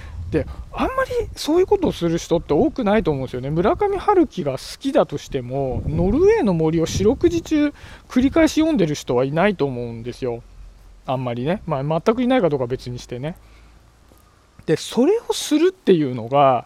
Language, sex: Japanese, male